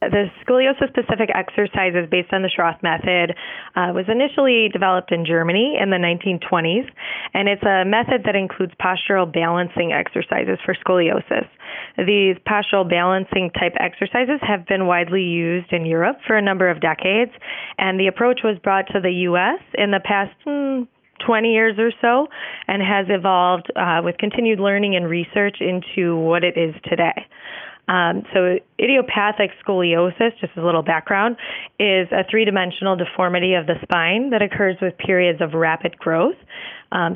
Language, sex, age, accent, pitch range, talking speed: English, female, 20-39, American, 175-210 Hz, 155 wpm